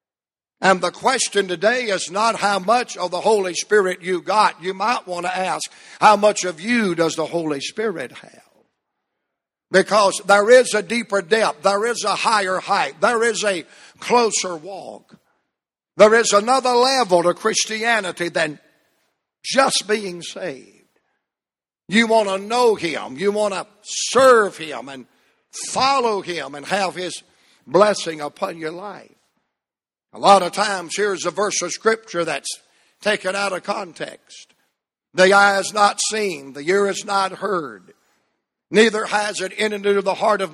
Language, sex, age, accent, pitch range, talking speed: English, male, 60-79, American, 180-215 Hz, 155 wpm